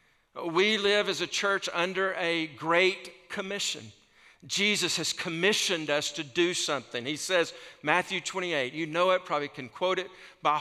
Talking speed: 160 wpm